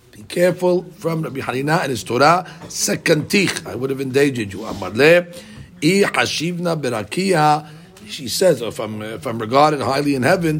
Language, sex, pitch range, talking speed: English, male, 135-175 Hz, 140 wpm